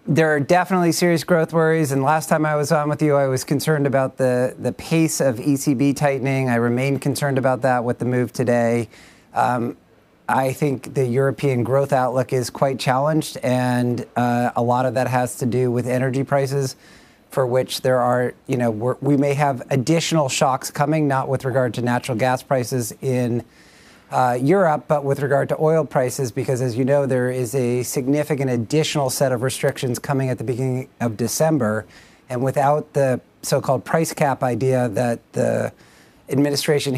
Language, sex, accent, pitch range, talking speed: English, male, American, 125-145 Hz, 180 wpm